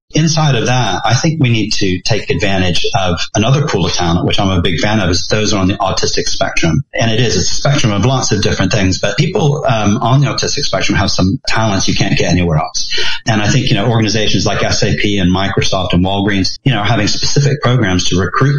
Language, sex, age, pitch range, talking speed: English, male, 30-49, 95-130 Hz, 235 wpm